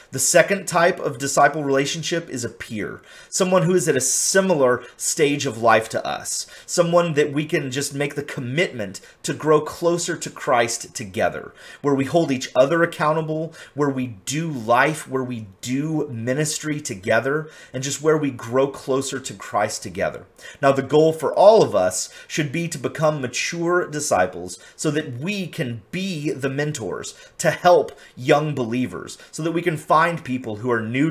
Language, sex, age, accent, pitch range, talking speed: English, male, 30-49, American, 125-160 Hz, 175 wpm